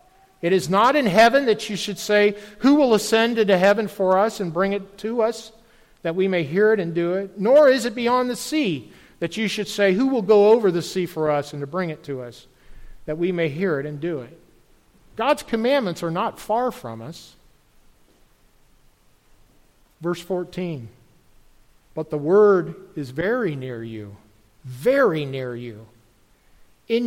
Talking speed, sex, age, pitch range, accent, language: 175 wpm, male, 50-69, 160-235 Hz, American, English